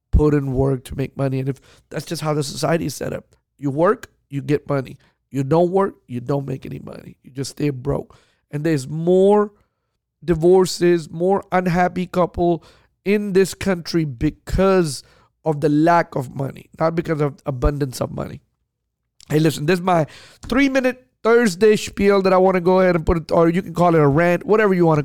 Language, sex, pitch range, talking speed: English, male, 145-180 Hz, 200 wpm